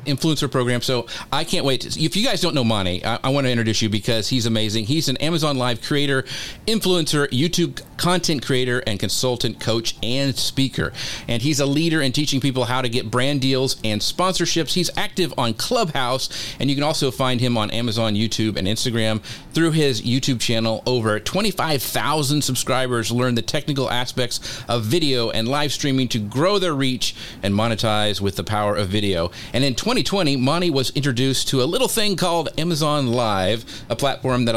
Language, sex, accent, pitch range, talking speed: English, male, American, 110-135 Hz, 190 wpm